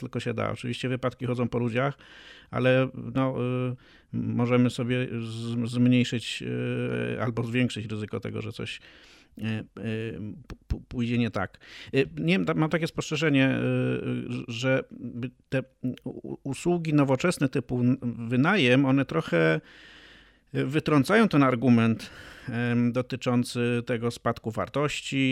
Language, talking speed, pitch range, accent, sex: Polish, 105 wpm, 120-140 Hz, native, male